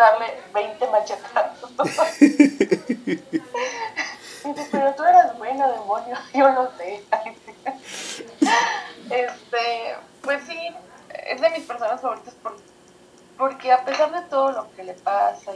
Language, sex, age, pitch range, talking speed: Spanish, female, 20-39, 185-255 Hz, 115 wpm